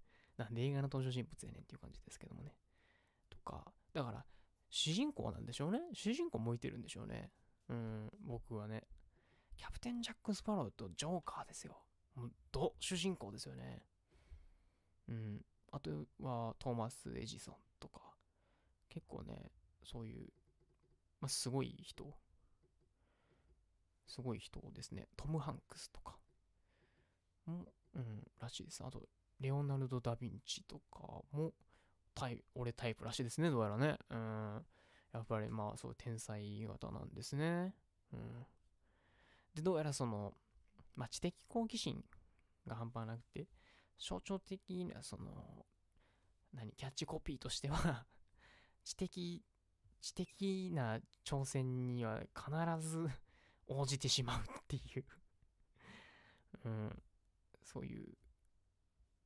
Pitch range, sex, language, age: 95-140 Hz, male, English, 20-39